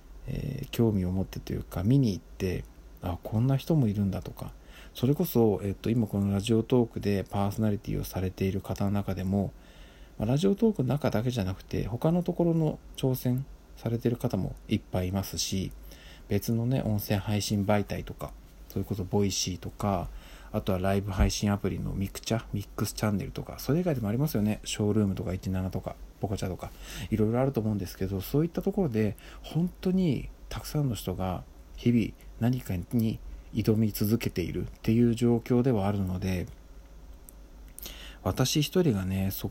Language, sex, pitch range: Japanese, male, 95-120 Hz